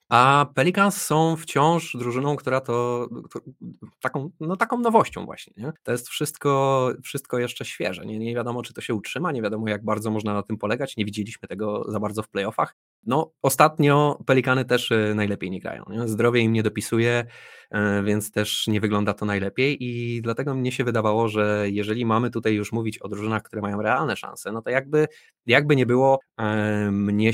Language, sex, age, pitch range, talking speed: Polish, male, 20-39, 105-130 Hz, 185 wpm